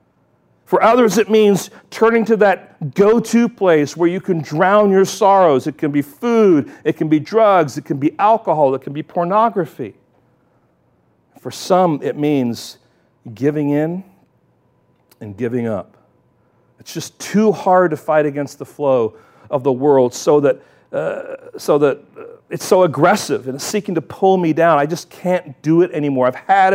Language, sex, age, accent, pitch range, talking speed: English, male, 40-59, American, 150-215 Hz, 170 wpm